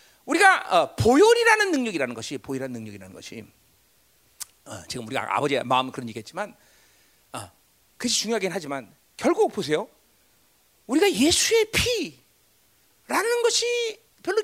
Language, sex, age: Korean, male, 40-59